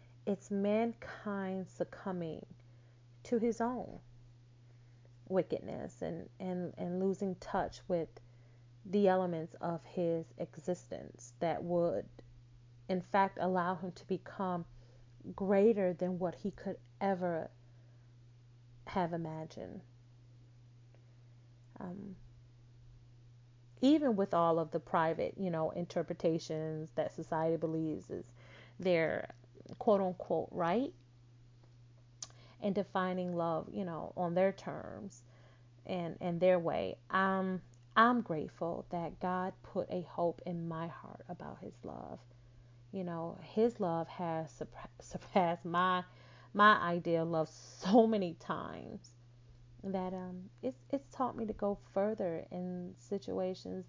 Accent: American